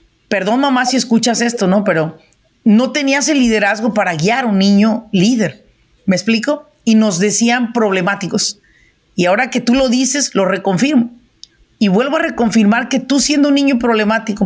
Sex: female